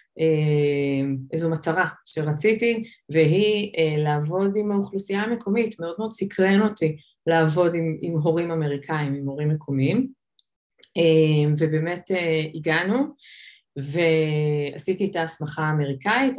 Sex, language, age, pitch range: female, Hebrew, 20-39, 155-200 Hz